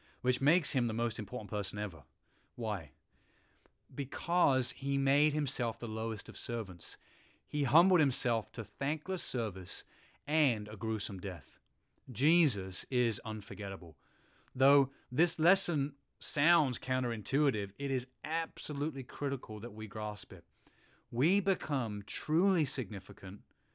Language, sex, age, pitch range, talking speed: English, male, 30-49, 110-135 Hz, 120 wpm